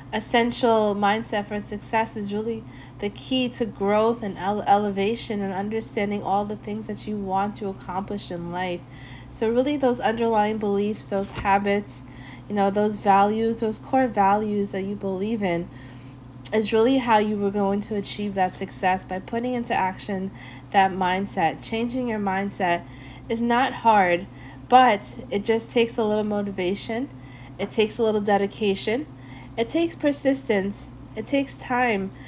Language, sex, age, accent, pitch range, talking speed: English, female, 20-39, American, 195-230 Hz, 150 wpm